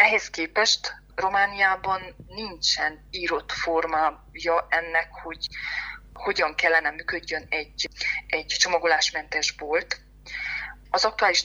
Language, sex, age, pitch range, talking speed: Hungarian, female, 20-39, 160-190 Hz, 90 wpm